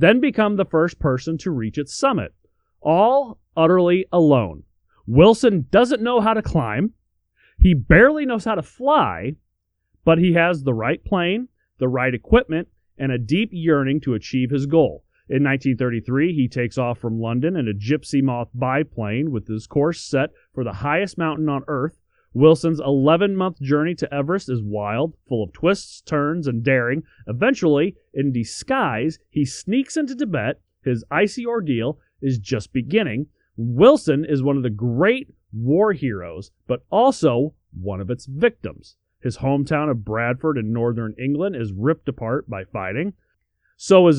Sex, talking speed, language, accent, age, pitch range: male, 160 wpm, English, American, 30-49, 125-170 Hz